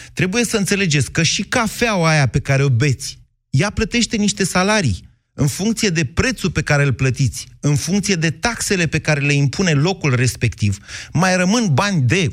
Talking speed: 180 wpm